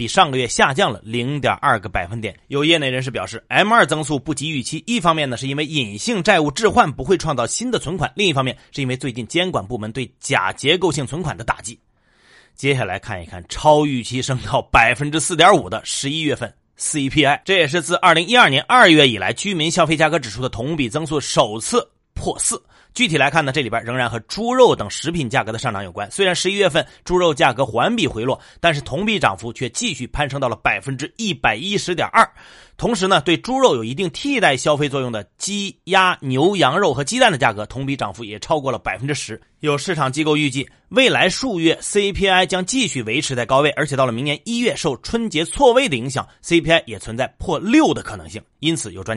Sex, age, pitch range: male, 30-49, 125-175 Hz